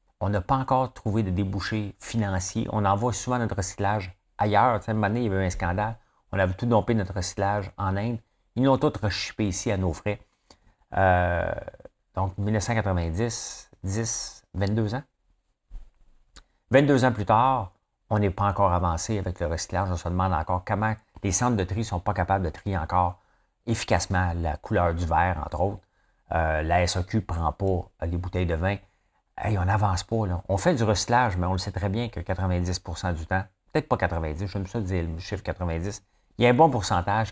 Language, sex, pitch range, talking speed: French, male, 90-110 Hz, 200 wpm